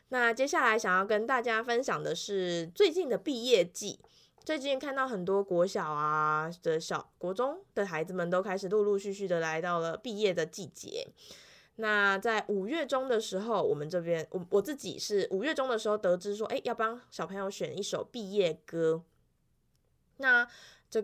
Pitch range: 185-250 Hz